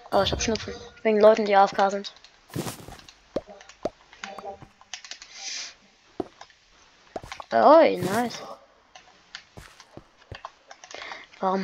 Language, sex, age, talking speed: German, female, 20-39, 60 wpm